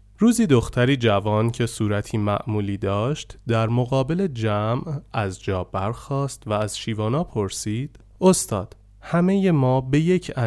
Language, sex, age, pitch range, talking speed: Persian, male, 30-49, 100-140 Hz, 125 wpm